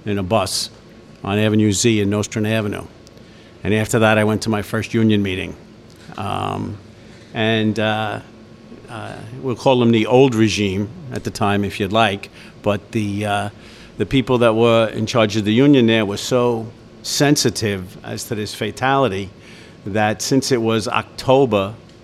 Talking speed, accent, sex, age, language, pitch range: 165 wpm, American, male, 50-69, English, 105-120 Hz